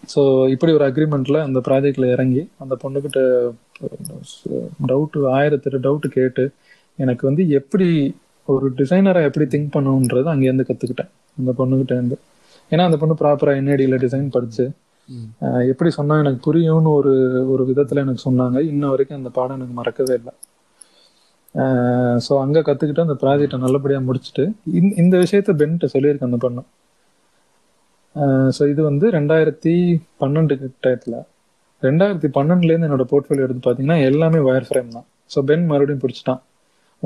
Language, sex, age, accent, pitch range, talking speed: Tamil, male, 30-49, native, 130-150 Hz, 135 wpm